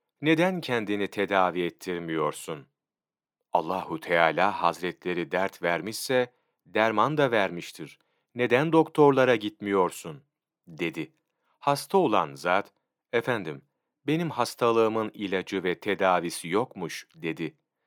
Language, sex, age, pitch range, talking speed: Turkish, male, 40-59, 95-130 Hz, 90 wpm